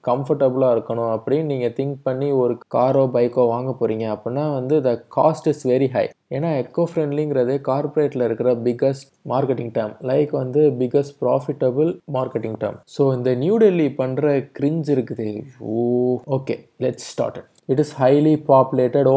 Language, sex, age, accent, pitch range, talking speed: Tamil, male, 20-39, native, 125-155 Hz, 150 wpm